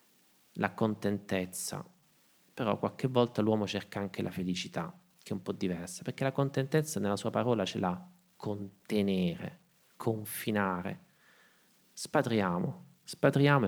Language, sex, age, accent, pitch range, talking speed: Italian, male, 30-49, native, 95-125 Hz, 120 wpm